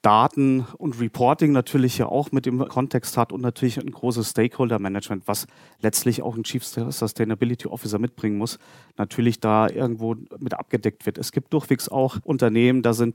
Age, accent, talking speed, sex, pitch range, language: 40-59, German, 170 wpm, male, 115-135 Hz, German